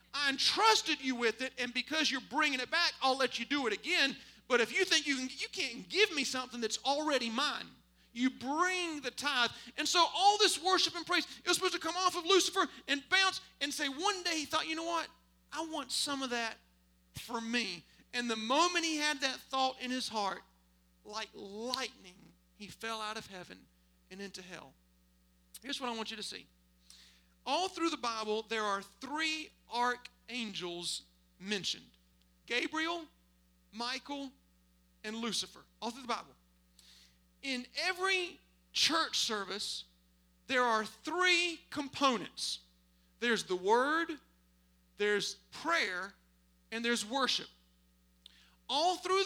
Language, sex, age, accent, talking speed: English, male, 40-59, American, 155 wpm